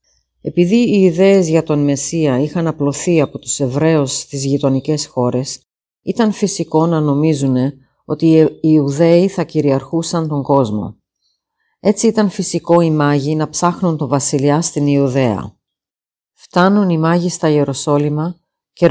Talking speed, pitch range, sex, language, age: 135 wpm, 140-170 Hz, female, Greek, 40-59